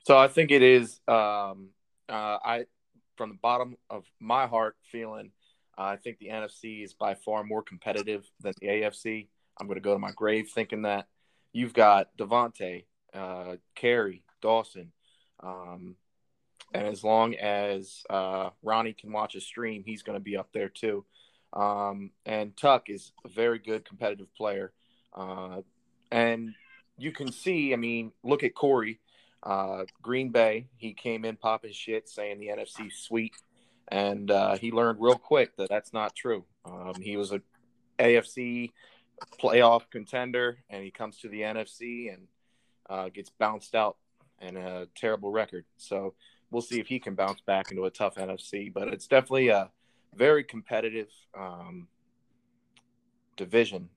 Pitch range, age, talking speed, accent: 95-120 Hz, 30-49, 160 wpm, American